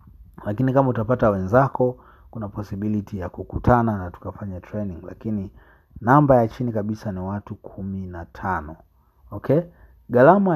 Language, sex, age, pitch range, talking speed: Swahili, male, 30-49, 95-115 Hz, 125 wpm